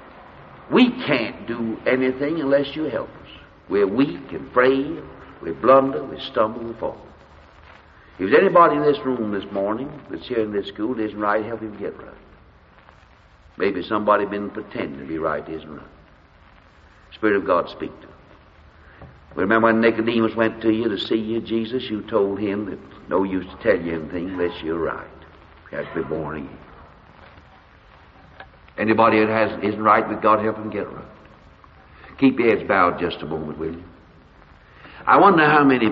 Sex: male